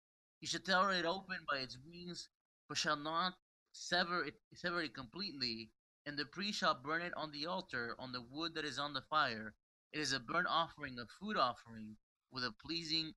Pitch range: 125-165 Hz